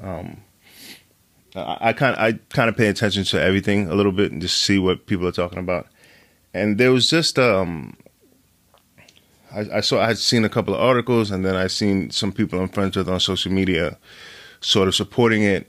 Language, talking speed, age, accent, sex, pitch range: English, 205 wpm, 20-39, American, male, 90-105 Hz